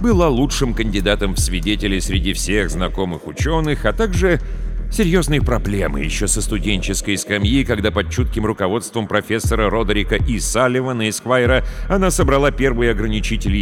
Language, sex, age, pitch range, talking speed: Russian, male, 40-59, 90-135 Hz, 130 wpm